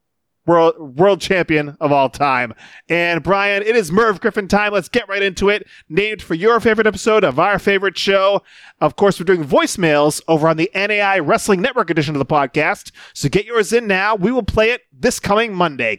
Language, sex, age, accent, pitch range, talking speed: English, male, 30-49, American, 170-225 Hz, 205 wpm